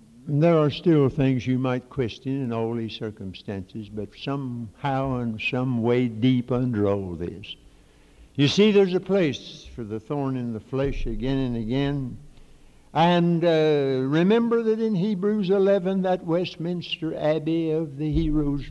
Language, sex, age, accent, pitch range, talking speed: English, male, 60-79, American, 135-175 Hz, 150 wpm